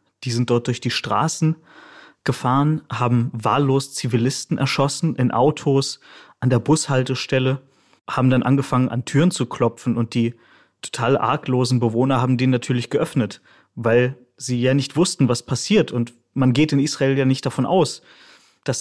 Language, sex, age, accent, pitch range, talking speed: German, male, 30-49, German, 120-140 Hz, 155 wpm